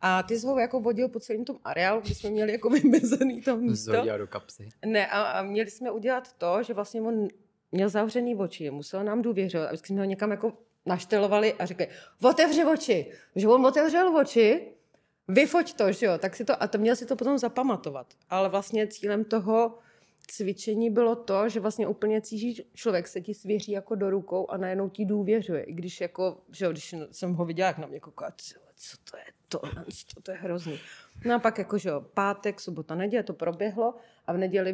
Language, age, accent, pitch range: Czech, 30-49, native, 170-220 Hz